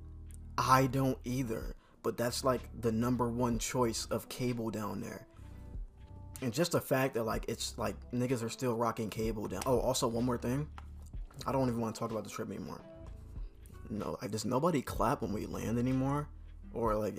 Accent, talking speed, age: American, 190 wpm, 20-39